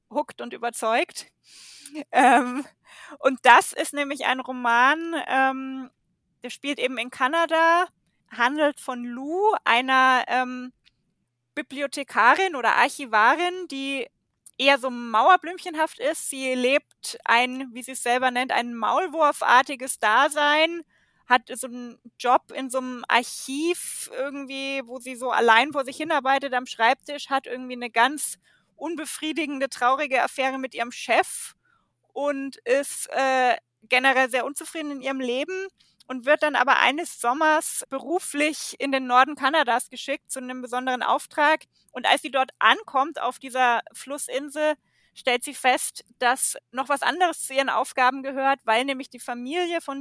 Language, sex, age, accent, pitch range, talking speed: German, female, 20-39, German, 250-290 Hz, 140 wpm